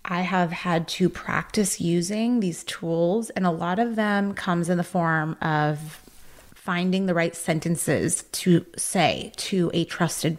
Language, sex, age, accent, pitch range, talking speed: English, female, 30-49, American, 165-200 Hz, 155 wpm